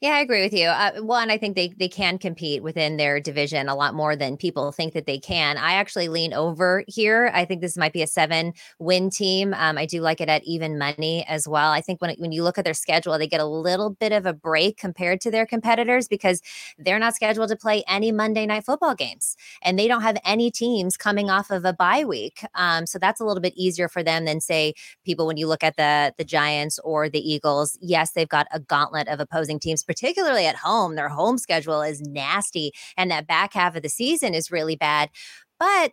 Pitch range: 160-215 Hz